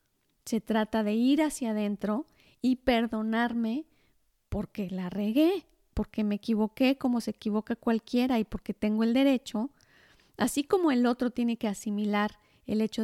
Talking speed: 145 wpm